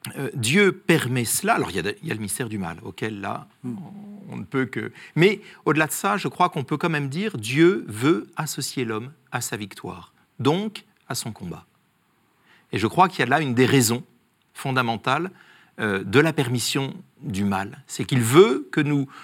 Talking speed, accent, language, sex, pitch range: 200 wpm, French, French, male, 120-175 Hz